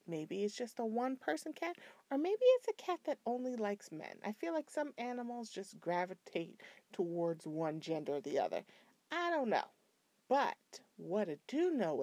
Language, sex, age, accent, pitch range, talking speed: English, female, 40-59, American, 195-315 Hz, 180 wpm